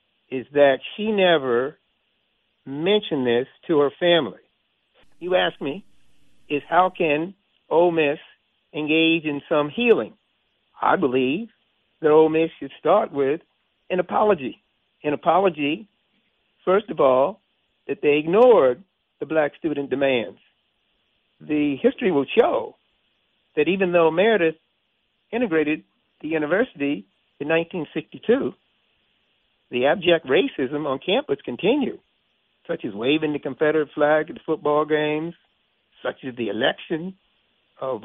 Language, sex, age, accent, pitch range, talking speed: English, male, 60-79, American, 140-170 Hz, 120 wpm